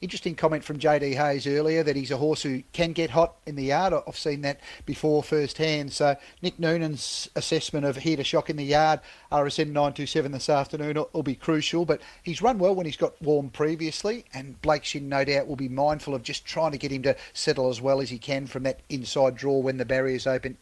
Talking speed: 225 wpm